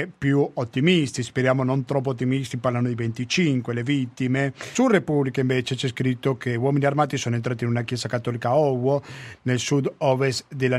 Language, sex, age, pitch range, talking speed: Italian, male, 40-59, 130-165 Hz, 165 wpm